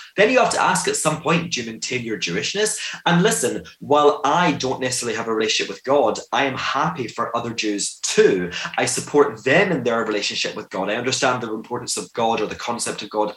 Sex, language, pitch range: male, English, 115-150 Hz